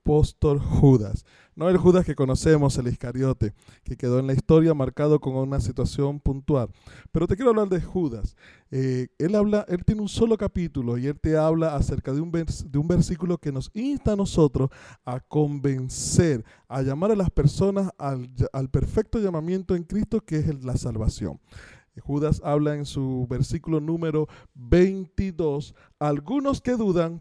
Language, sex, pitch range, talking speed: Spanish, male, 135-190 Hz, 170 wpm